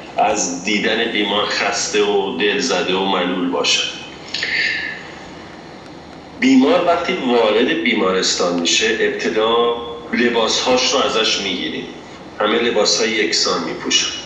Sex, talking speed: male, 100 wpm